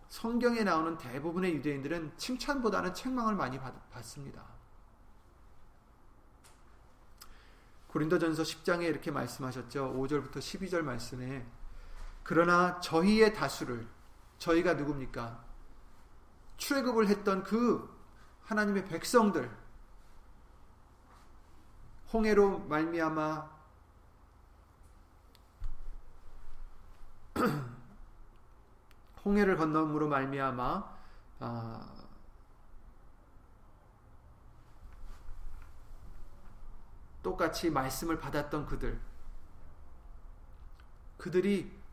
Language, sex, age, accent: Korean, male, 40-59, native